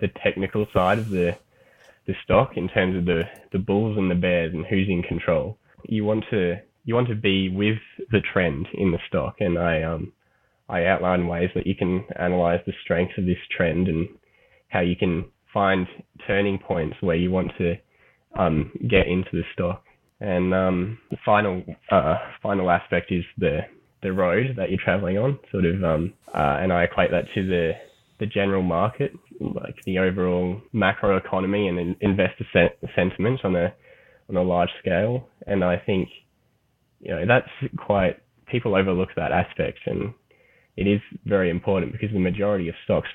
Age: 10-29